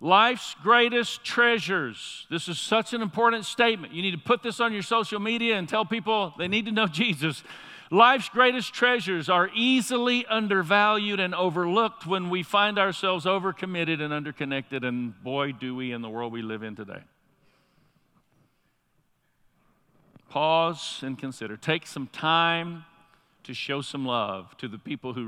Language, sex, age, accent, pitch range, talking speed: English, male, 50-69, American, 140-200 Hz, 155 wpm